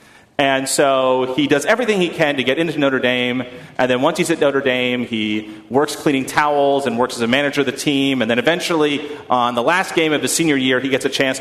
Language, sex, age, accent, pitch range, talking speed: English, male, 30-49, American, 135-195 Hz, 240 wpm